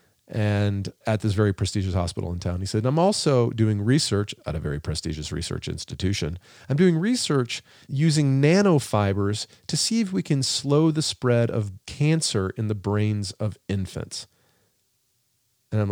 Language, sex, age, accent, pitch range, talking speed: English, male, 40-59, American, 95-135 Hz, 160 wpm